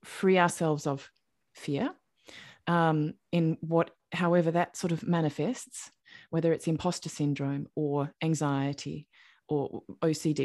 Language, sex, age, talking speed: English, female, 20-39, 115 wpm